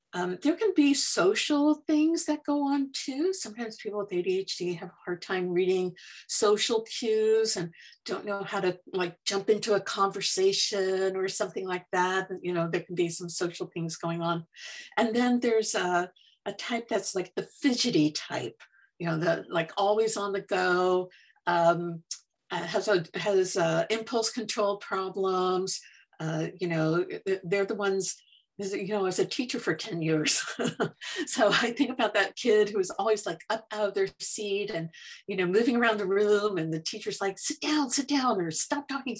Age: 50-69